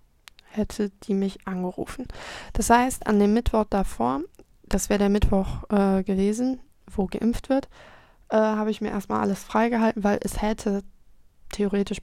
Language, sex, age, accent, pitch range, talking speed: German, female, 20-39, German, 185-205 Hz, 150 wpm